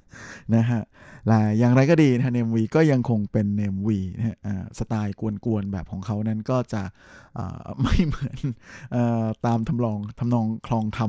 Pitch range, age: 105-125 Hz, 20-39